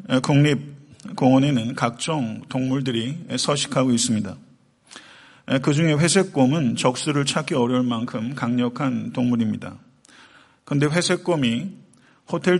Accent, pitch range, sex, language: native, 125-155 Hz, male, Korean